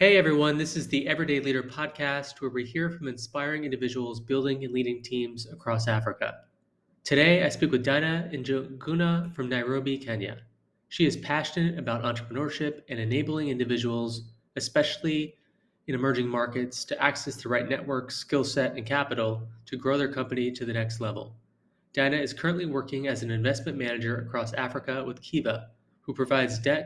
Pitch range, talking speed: 120-145 Hz, 165 wpm